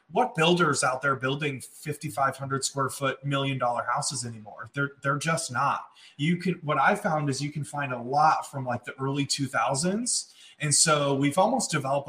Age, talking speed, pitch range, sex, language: 20-39, 190 wpm, 130-155 Hz, male, English